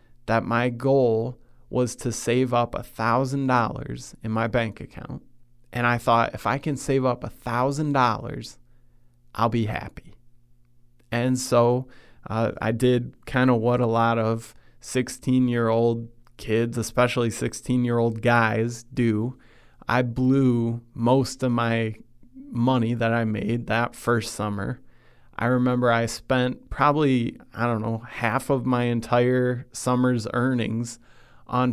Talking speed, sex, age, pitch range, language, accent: 135 wpm, male, 20-39, 115-125 Hz, English, American